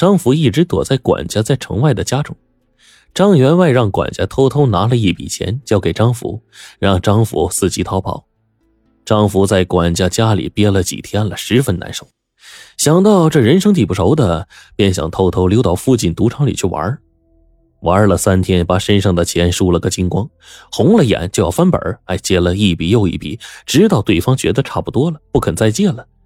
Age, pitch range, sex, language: 20-39, 85-110 Hz, male, Chinese